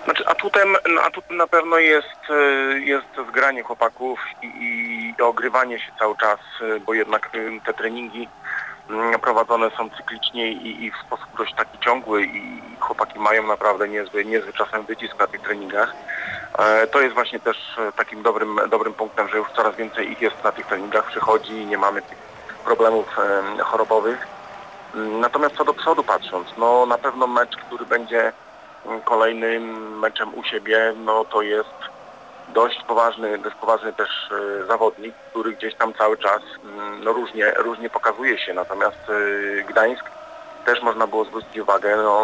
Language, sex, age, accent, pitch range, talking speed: Polish, male, 40-59, native, 110-140 Hz, 150 wpm